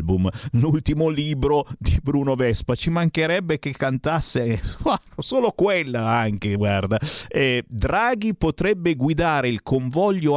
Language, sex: Italian, male